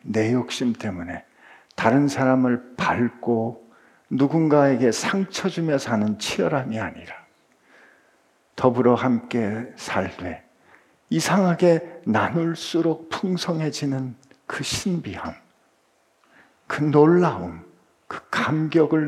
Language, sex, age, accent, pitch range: Korean, male, 50-69, native, 110-150 Hz